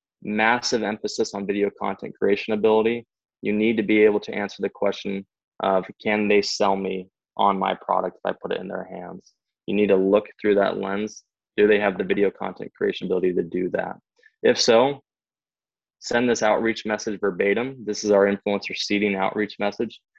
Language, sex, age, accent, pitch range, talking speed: English, male, 20-39, American, 100-110 Hz, 185 wpm